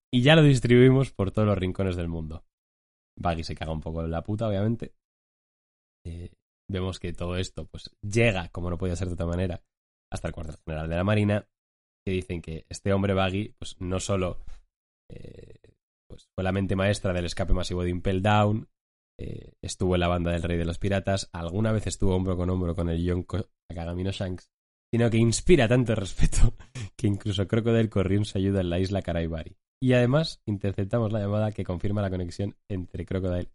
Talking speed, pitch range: 195 wpm, 85-105 Hz